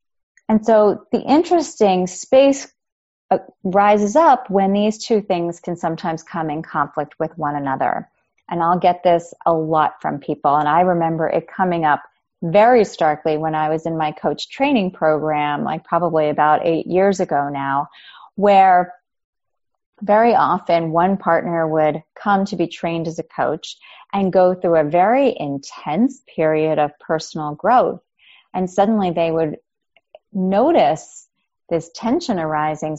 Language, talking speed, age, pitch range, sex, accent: English, 145 wpm, 30-49, 160-210 Hz, female, American